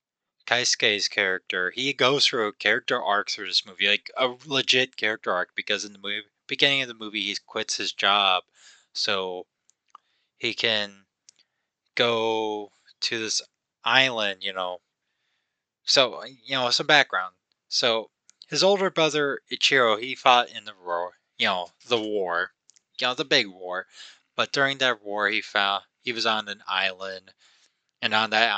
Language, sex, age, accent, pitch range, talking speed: English, male, 20-39, American, 100-135 Hz, 155 wpm